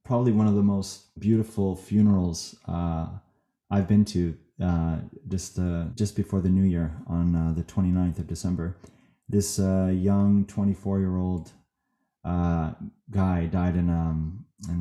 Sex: male